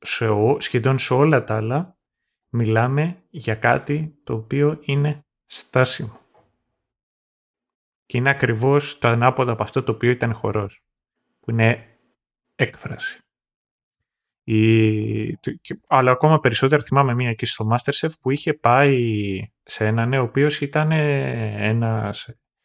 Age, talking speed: 30-49, 125 wpm